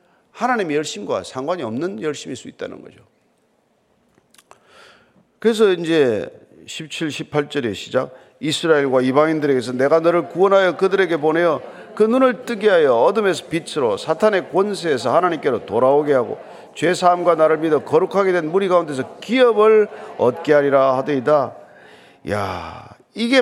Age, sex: 40-59, male